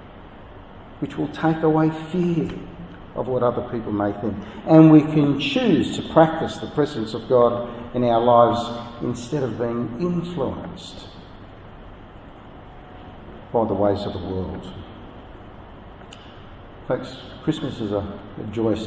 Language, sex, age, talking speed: English, male, 60-79, 125 wpm